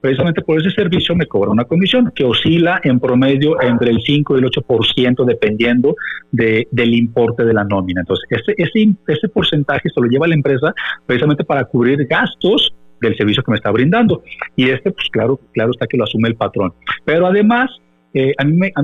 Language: Spanish